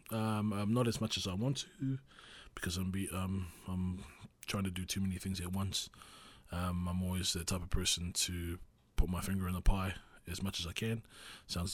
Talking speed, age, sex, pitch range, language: 215 wpm, 20-39, male, 90-110 Hz, English